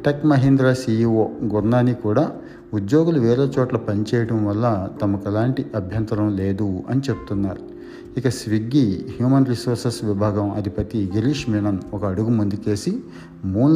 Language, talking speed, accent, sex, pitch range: Telugu, 120 wpm, native, male, 100-120 Hz